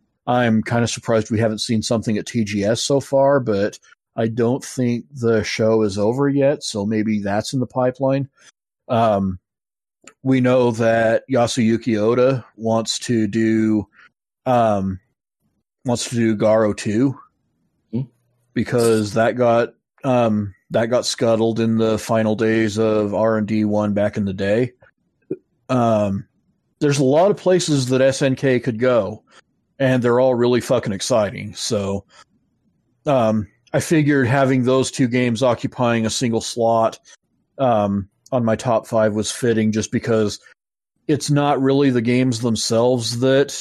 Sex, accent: male, American